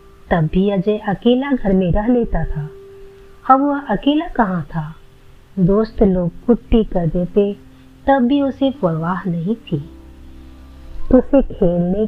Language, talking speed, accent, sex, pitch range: Hindi, 130 wpm, native, female, 165-230 Hz